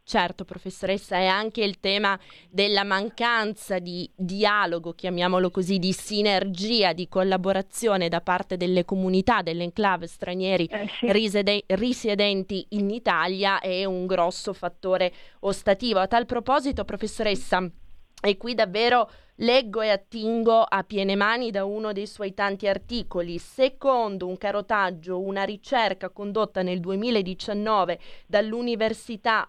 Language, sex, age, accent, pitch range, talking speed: Italian, female, 20-39, native, 185-220 Hz, 120 wpm